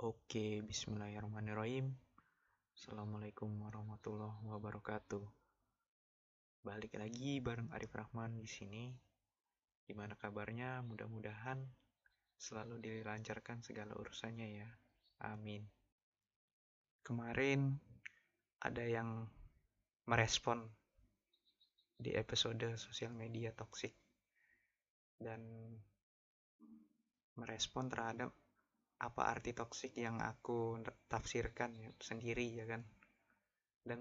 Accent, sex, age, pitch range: native, male, 20-39, 105-120 Hz